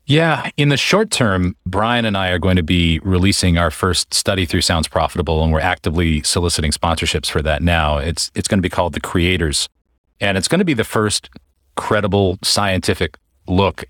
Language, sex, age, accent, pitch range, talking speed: English, male, 40-59, American, 85-105 Hz, 195 wpm